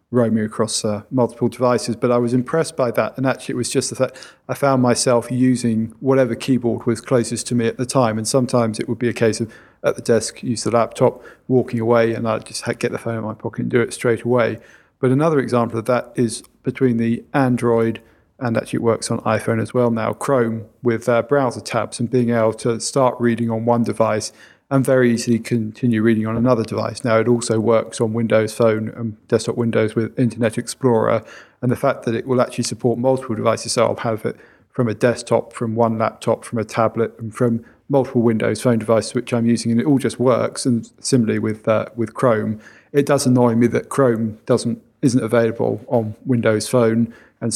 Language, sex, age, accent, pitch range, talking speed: English, male, 40-59, British, 115-125 Hz, 215 wpm